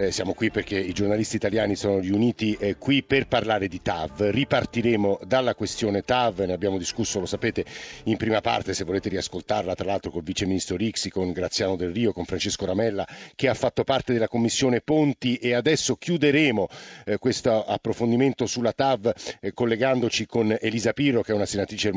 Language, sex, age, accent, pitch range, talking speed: Italian, male, 50-69, native, 100-125 Hz, 185 wpm